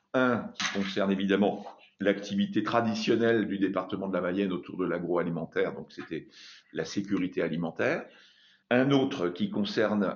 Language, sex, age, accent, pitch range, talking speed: French, male, 50-69, French, 90-110 Hz, 135 wpm